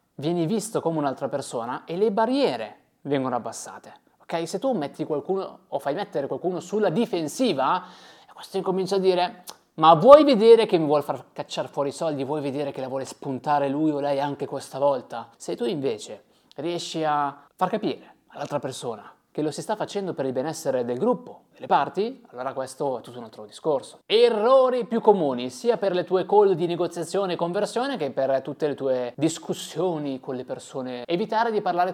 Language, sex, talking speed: Italian, male, 190 wpm